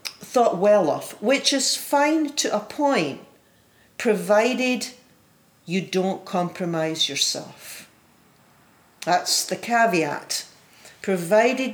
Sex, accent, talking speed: female, British, 90 wpm